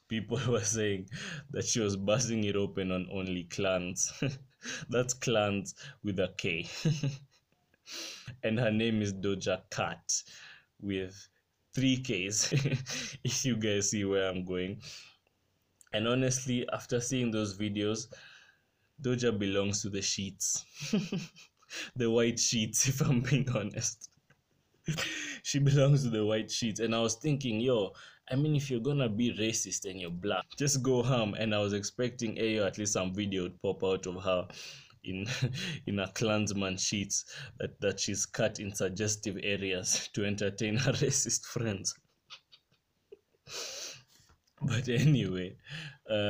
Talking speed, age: 145 wpm, 20-39